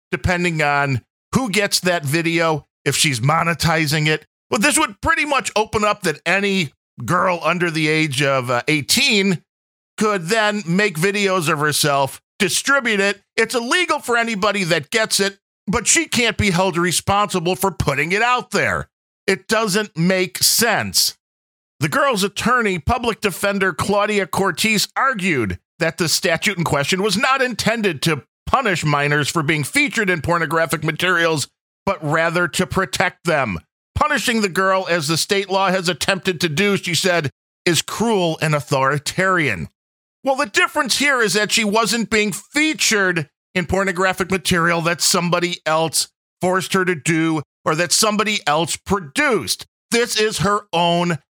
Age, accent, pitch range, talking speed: 50-69, American, 160-210 Hz, 155 wpm